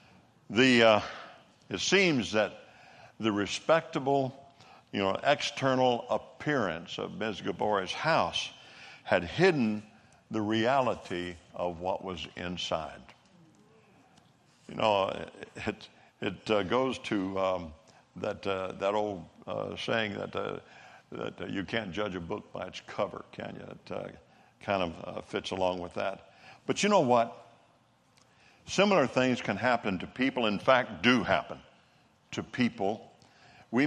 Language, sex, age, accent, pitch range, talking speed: English, male, 60-79, American, 95-130 Hz, 135 wpm